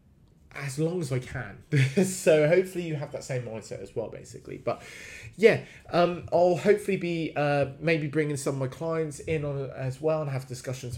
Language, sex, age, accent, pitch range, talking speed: English, male, 20-39, British, 120-150 Hz, 190 wpm